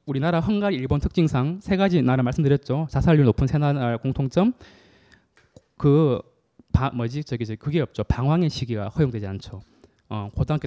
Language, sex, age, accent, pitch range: Korean, male, 20-39, native, 115-160 Hz